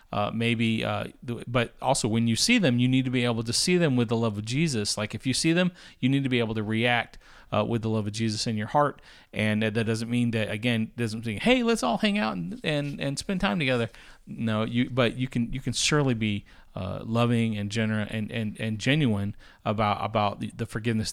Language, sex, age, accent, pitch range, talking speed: English, male, 40-59, American, 105-125 Hz, 235 wpm